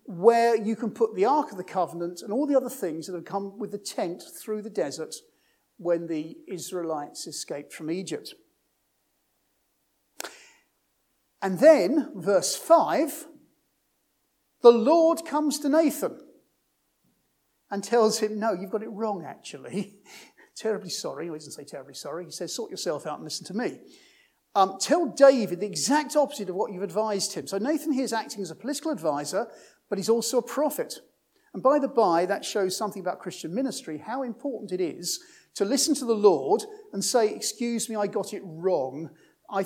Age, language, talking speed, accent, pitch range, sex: 50-69, English, 175 wpm, British, 185-275 Hz, male